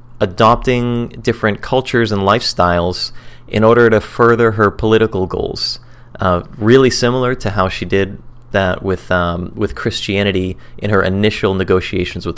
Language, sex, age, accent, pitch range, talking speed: English, male, 30-49, American, 100-120 Hz, 140 wpm